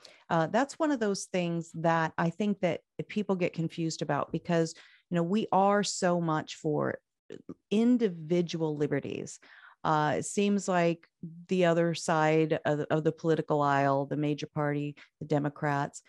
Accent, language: American, English